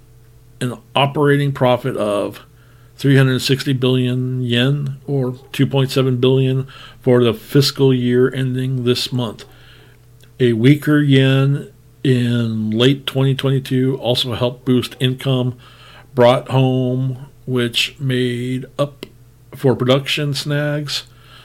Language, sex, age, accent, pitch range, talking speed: English, male, 50-69, American, 120-135 Hz, 100 wpm